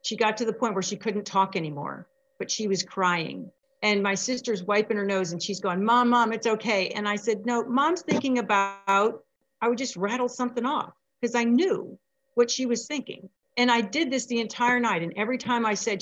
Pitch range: 195-245 Hz